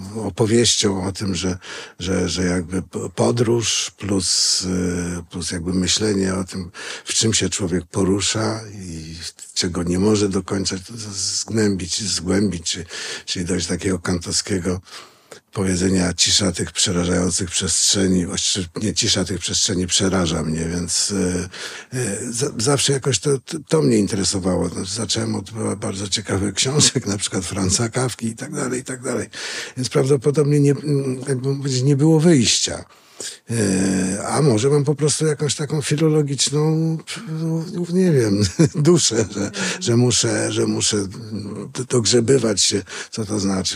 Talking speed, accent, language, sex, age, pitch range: 135 wpm, native, Polish, male, 50-69, 95-125 Hz